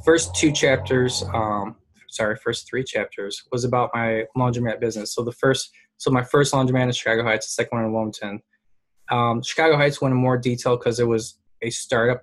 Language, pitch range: English, 115-140 Hz